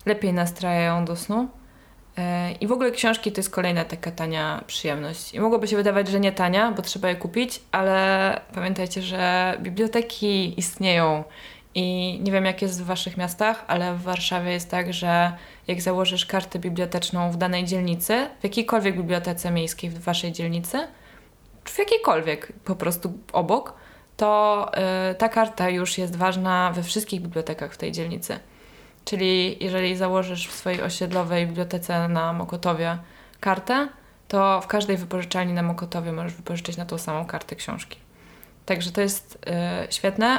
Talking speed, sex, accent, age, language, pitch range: 155 wpm, female, native, 20-39, Polish, 175-195 Hz